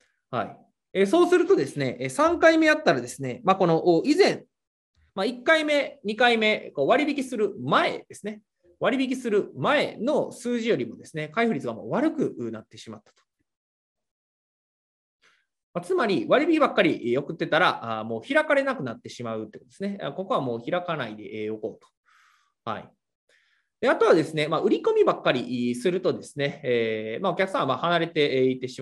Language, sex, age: Japanese, male, 20-39